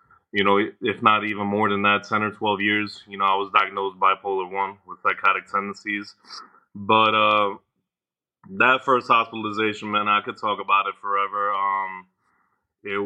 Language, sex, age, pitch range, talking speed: English, male, 20-39, 100-110 Hz, 165 wpm